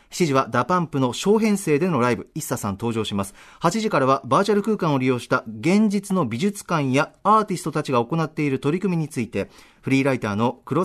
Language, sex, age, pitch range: Japanese, male, 40-59, 130-195 Hz